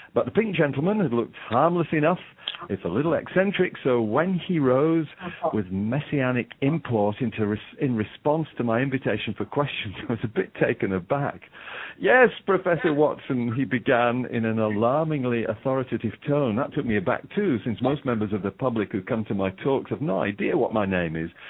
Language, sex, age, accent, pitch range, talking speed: English, male, 50-69, British, 110-150 Hz, 180 wpm